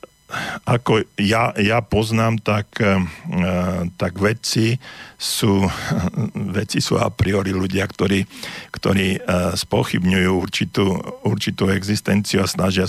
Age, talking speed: 50-69, 95 wpm